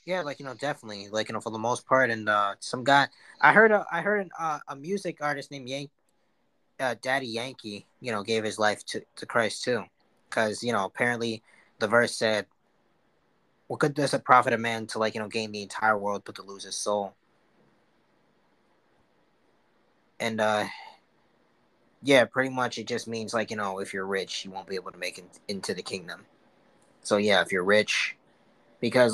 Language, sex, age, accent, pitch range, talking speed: English, male, 20-39, American, 105-135 Hz, 200 wpm